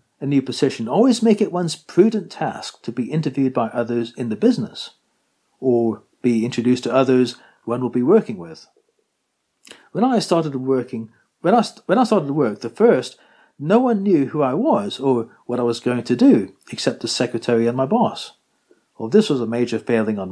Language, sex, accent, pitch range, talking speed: English, male, British, 115-180 Hz, 190 wpm